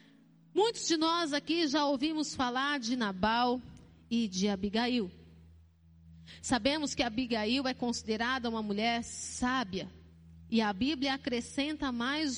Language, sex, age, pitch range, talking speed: Portuguese, female, 40-59, 225-320 Hz, 120 wpm